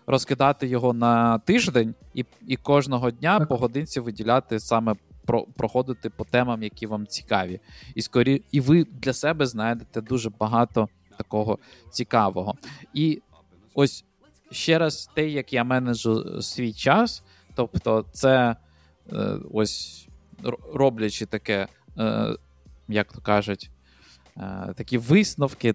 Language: Ukrainian